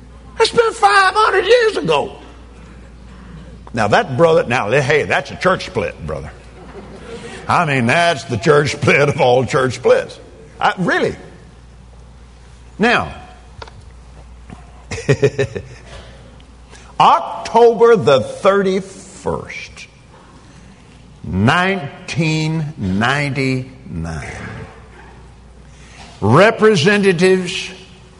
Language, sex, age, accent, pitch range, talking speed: Danish, male, 60-79, American, 120-195 Hz, 70 wpm